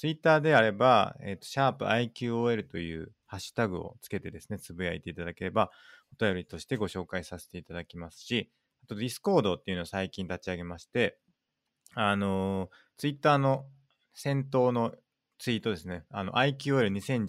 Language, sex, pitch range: Japanese, male, 90-125 Hz